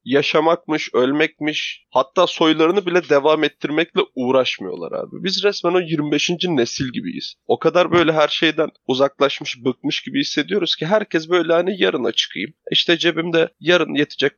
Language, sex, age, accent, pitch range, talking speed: Turkish, male, 30-49, native, 125-165 Hz, 140 wpm